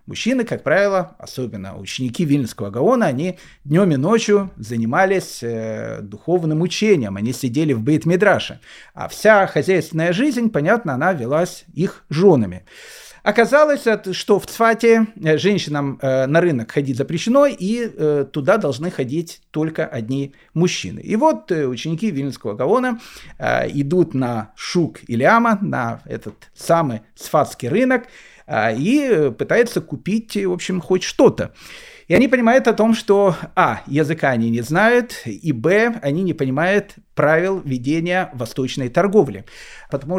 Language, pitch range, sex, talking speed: Russian, 140-210 Hz, male, 125 wpm